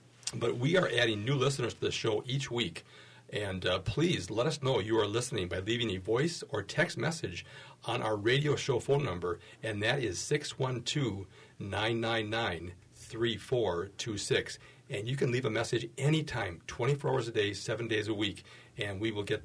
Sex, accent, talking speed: male, American, 175 wpm